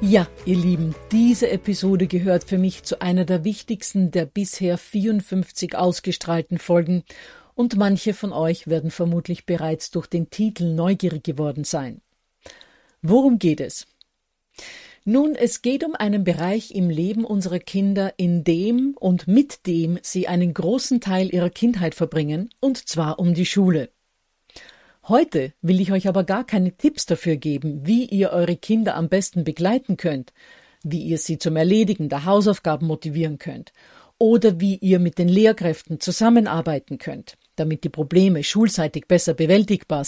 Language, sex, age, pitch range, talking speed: German, female, 50-69, 165-210 Hz, 150 wpm